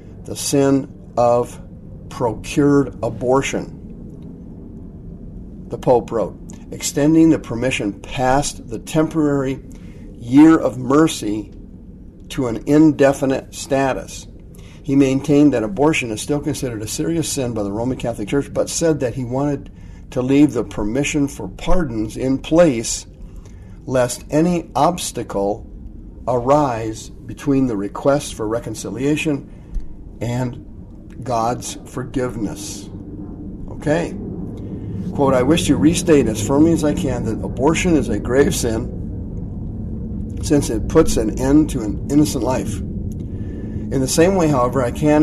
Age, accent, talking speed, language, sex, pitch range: 50-69, American, 125 wpm, English, male, 105-145 Hz